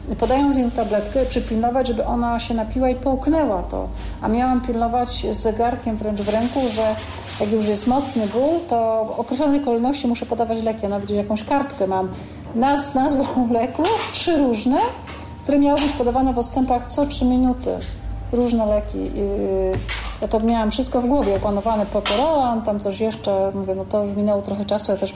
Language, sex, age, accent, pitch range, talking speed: Polish, female, 40-59, native, 205-260 Hz, 180 wpm